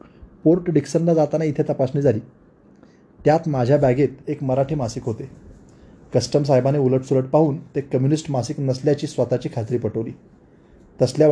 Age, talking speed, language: 20-39, 135 wpm, Marathi